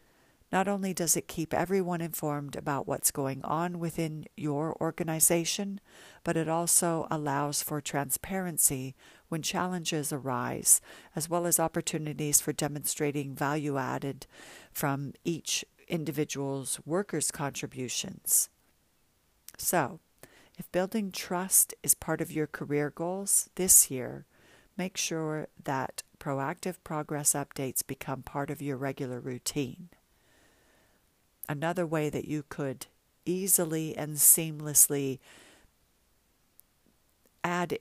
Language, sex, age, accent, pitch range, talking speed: English, female, 50-69, American, 140-170 Hz, 110 wpm